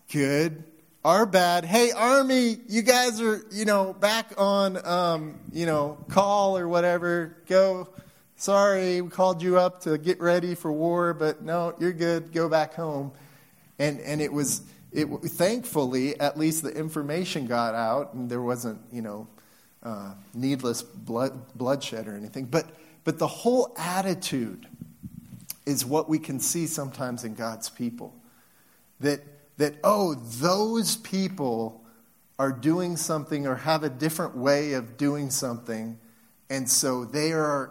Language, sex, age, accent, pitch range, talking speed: English, male, 30-49, American, 130-175 Hz, 155 wpm